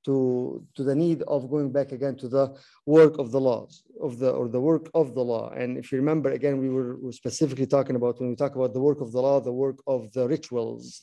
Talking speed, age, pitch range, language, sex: 260 wpm, 50-69, 135-165 Hz, English, male